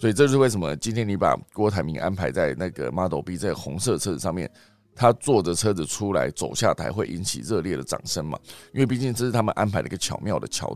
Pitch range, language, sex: 95-125 Hz, Chinese, male